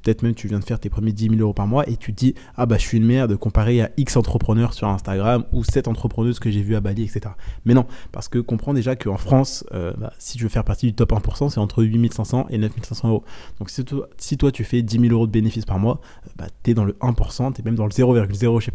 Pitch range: 105-120 Hz